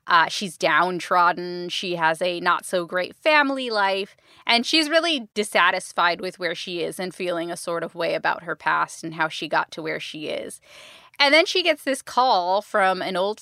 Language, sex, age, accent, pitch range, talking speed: English, female, 20-39, American, 175-210 Hz, 190 wpm